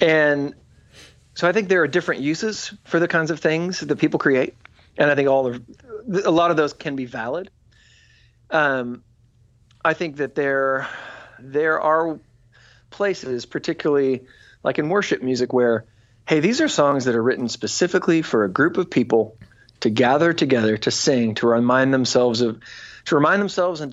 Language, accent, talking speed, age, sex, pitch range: English, American, 170 wpm, 40-59, male, 120-155 Hz